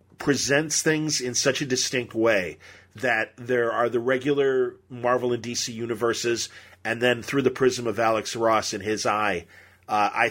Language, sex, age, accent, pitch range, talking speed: English, male, 40-59, American, 110-145 Hz, 170 wpm